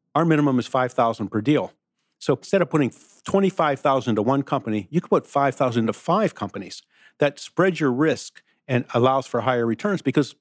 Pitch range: 120-150 Hz